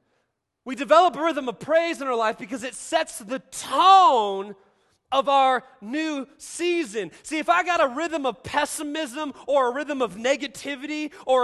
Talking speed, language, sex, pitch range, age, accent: 170 wpm, English, male, 245-330 Hz, 30-49, American